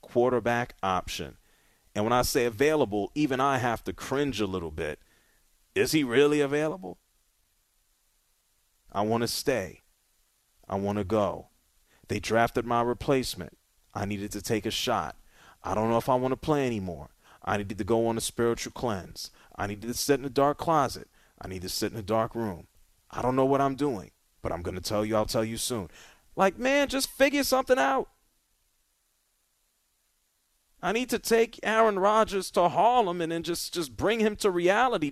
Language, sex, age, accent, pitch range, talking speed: English, male, 30-49, American, 105-175 Hz, 185 wpm